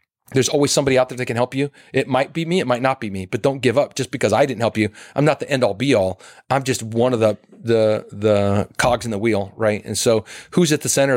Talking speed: 285 wpm